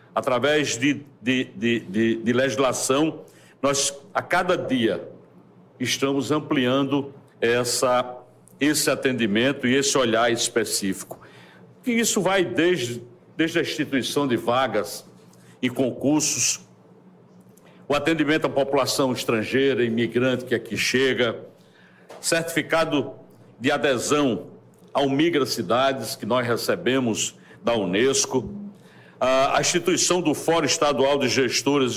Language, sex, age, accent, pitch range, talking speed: Portuguese, male, 60-79, Brazilian, 120-150 Hz, 100 wpm